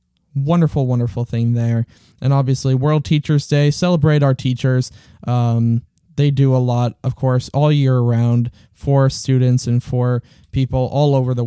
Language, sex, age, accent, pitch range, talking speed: English, male, 20-39, American, 130-185 Hz, 155 wpm